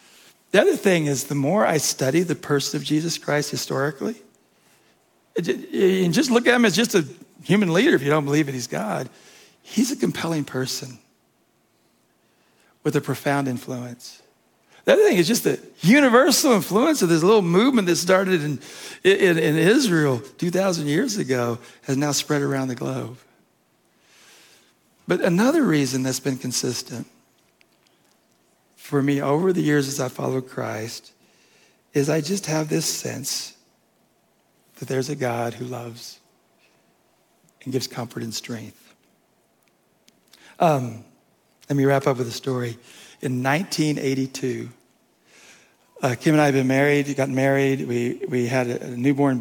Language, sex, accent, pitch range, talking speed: English, male, American, 130-155 Hz, 150 wpm